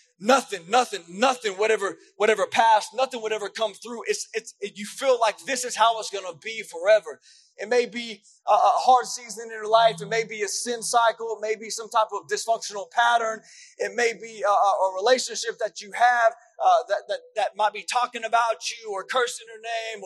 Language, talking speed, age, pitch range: English, 215 wpm, 20-39, 215-275 Hz